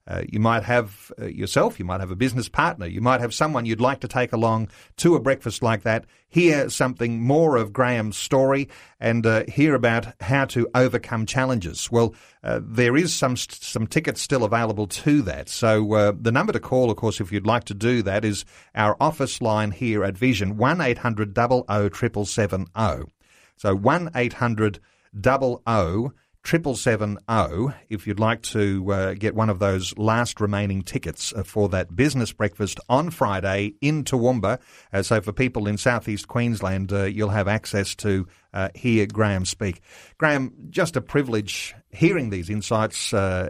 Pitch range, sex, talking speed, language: 100-125 Hz, male, 180 wpm, English